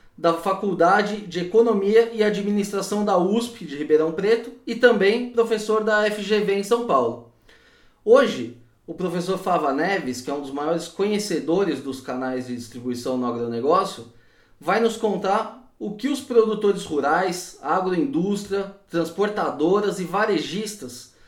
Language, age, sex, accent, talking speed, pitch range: Portuguese, 20-39, male, Brazilian, 135 wpm, 150-205 Hz